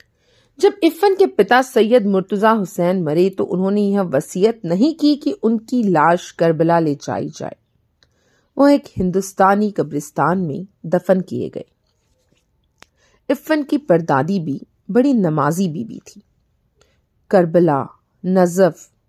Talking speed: 125 wpm